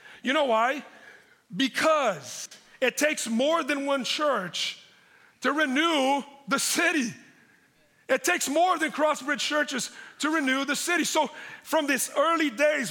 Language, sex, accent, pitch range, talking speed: English, male, American, 195-290 Hz, 135 wpm